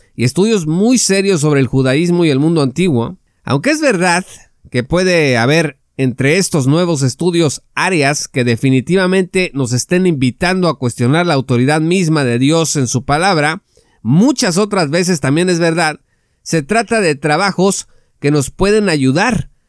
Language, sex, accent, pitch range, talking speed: Spanish, male, Mexican, 140-190 Hz, 155 wpm